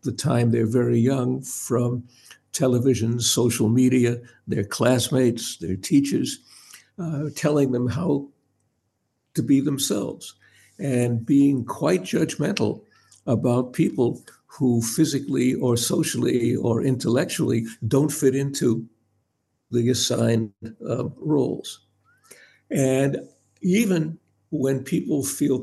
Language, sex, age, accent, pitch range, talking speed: English, male, 60-79, American, 120-145 Hz, 105 wpm